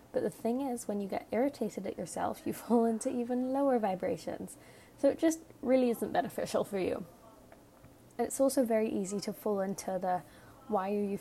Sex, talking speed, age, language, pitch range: female, 185 wpm, 20-39, English, 195-230 Hz